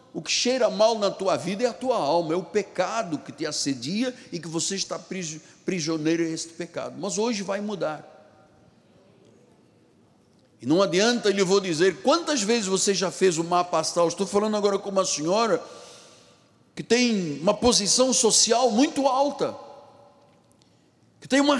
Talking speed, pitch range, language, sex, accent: 170 wpm, 190-260 Hz, Portuguese, male, Brazilian